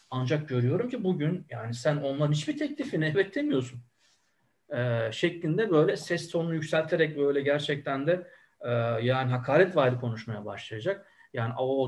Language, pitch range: Turkish, 130-180 Hz